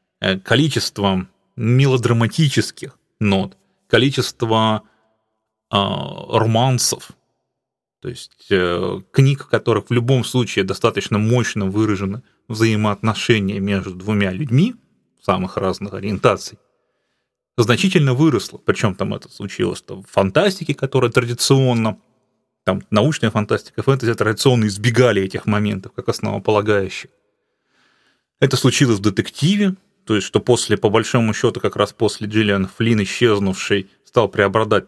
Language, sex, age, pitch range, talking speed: English, male, 30-49, 105-125 Hz, 110 wpm